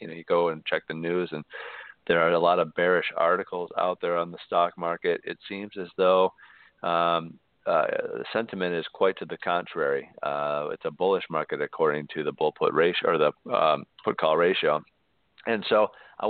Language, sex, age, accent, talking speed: English, male, 40-59, American, 195 wpm